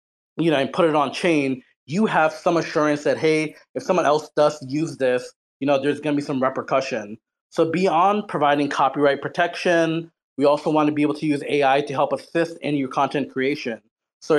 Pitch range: 135-160 Hz